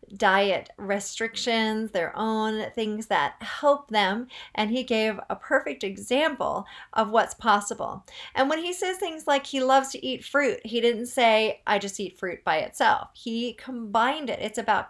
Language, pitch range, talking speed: English, 200-250 Hz, 170 wpm